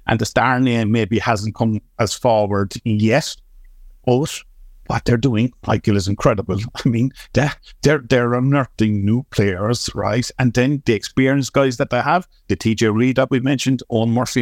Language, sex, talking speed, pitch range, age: English, male, 175 wpm, 105-130 Hz, 50-69